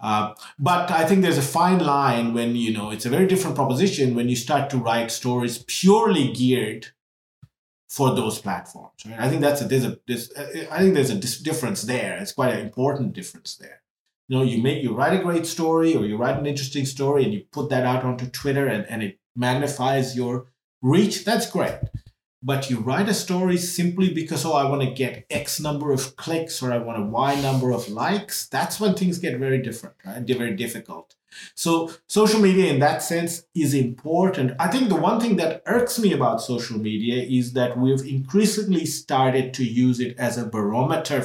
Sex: male